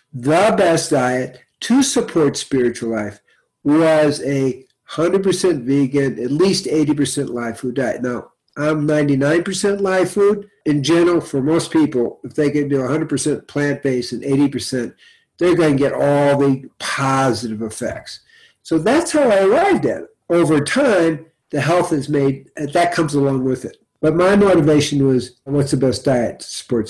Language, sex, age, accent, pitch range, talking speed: English, male, 50-69, American, 130-170 Hz, 165 wpm